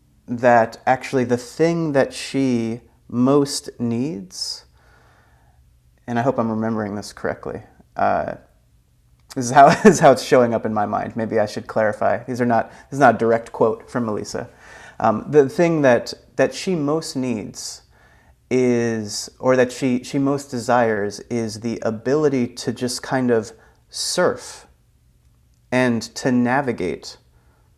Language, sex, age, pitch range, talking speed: English, male, 30-49, 105-130 Hz, 150 wpm